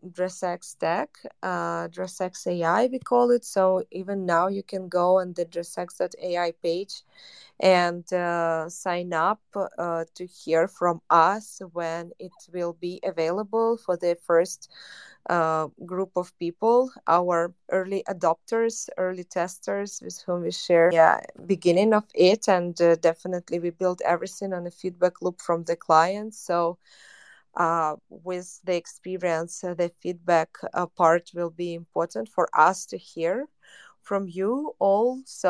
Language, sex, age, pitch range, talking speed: English, female, 20-39, 170-195 Hz, 140 wpm